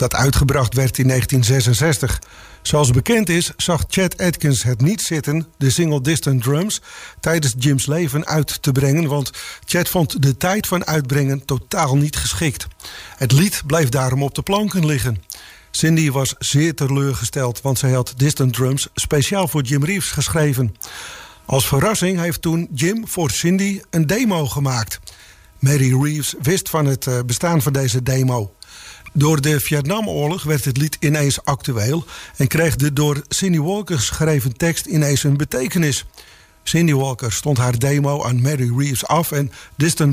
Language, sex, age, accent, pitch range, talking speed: English, male, 50-69, Dutch, 135-165 Hz, 155 wpm